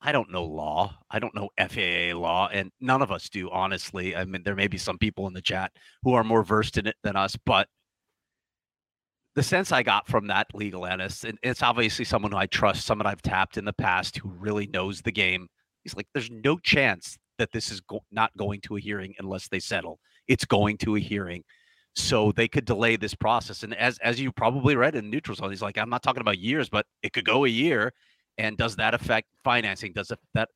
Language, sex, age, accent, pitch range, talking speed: English, male, 30-49, American, 100-115 Hz, 230 wpm